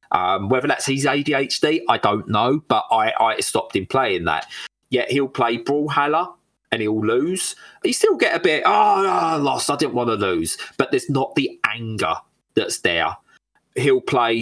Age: 30-49